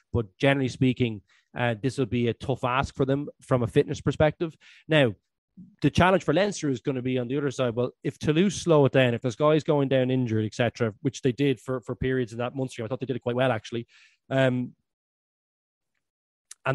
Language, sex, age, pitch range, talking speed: English, male, 20-39, 125-155 Hz, 225 wpm